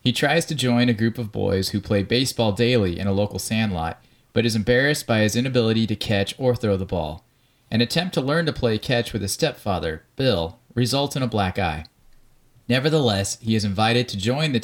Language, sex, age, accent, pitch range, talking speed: English, male, 30-49, American, 100-125 Hz, 210 wpm